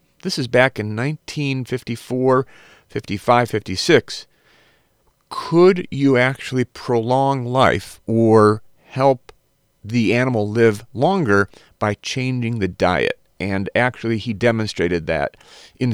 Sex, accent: male, American